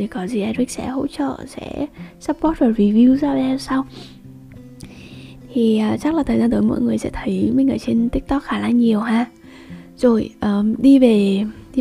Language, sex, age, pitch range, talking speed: Vietnamese, female, 20-39, 200-250 Hz, 190 wpm